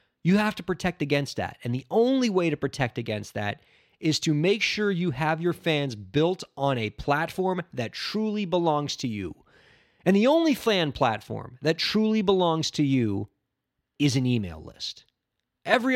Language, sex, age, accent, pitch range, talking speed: English, male, 30-49, American, 125-170 Hz, 175 wpm